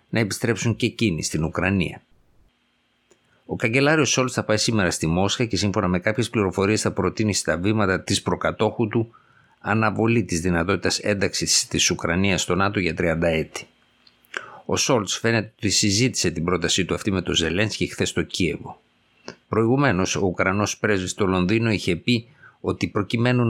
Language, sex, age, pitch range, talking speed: Greek, male, 50-69, 90-110 Hz, 160 wpm